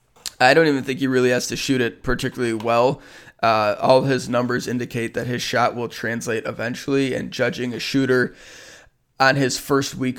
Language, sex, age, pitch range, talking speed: English, male, 20-39, 110-125 Hz, 185 wpm